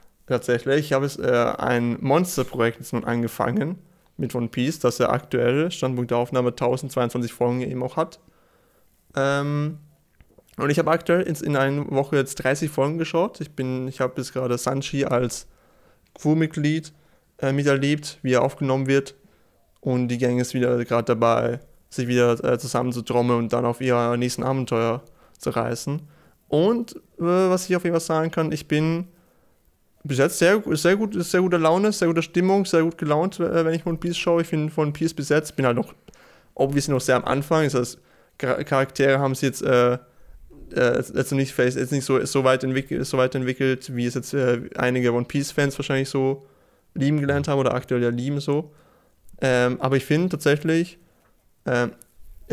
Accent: German